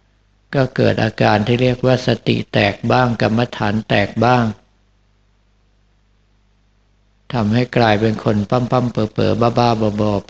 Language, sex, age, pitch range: Thai, male, 60-79, 105-120 Hz